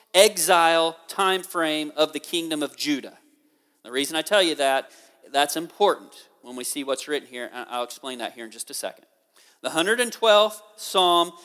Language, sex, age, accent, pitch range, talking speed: English, male, 40-59, American, 155-205 Hz, 175 wpm